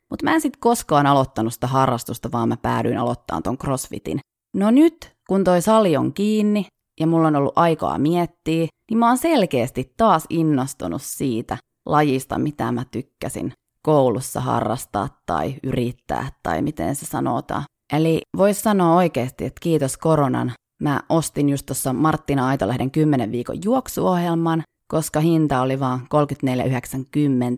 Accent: native